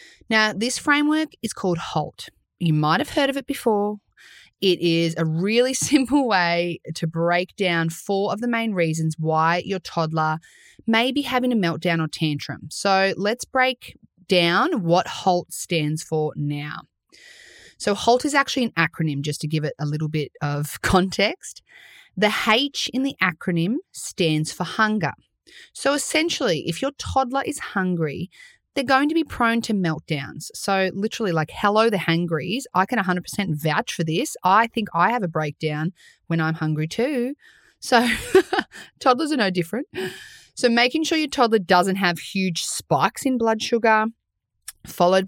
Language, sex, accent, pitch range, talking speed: English, female, Australian, 165-245 Hz, 165 wpm